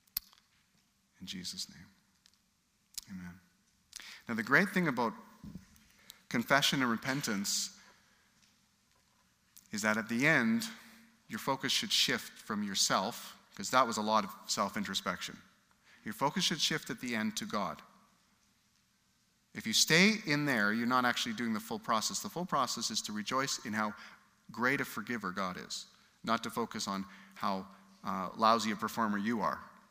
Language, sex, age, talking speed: English, male, 40-59, 150 wpm